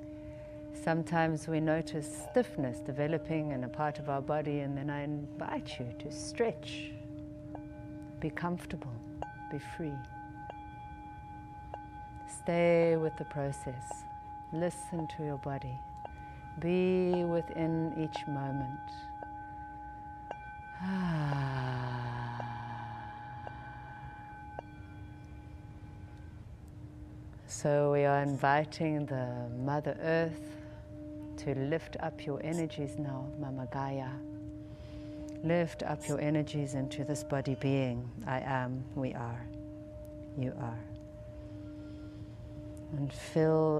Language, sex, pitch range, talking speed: English, female, 120-150 Hz, 90 wpm